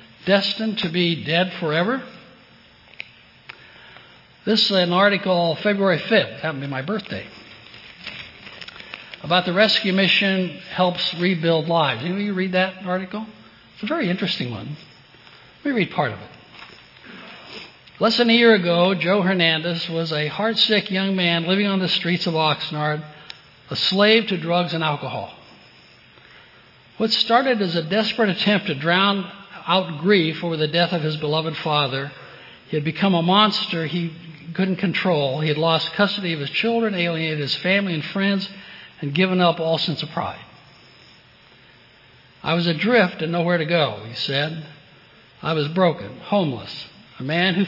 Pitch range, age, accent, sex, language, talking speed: 155-195 Hz, 60-79, American, male, English, 155 wpm